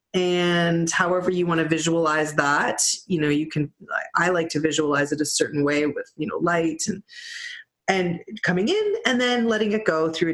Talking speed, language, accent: 190 wpm, English, American